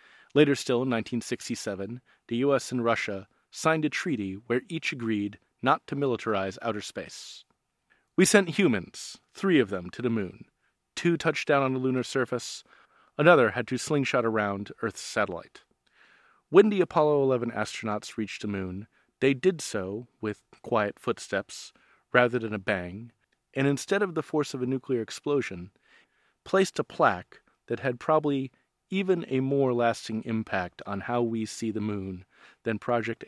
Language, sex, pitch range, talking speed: English, male, 110-150 Hz, 160 wpm